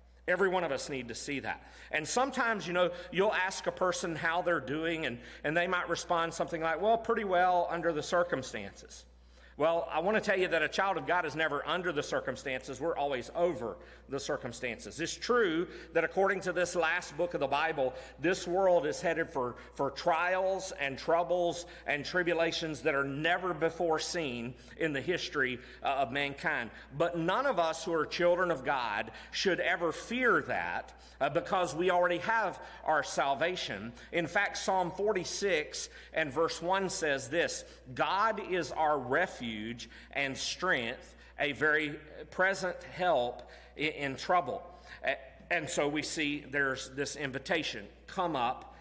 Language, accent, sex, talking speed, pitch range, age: English, American, male, 165 wpm, 135-180 Hz, 40-59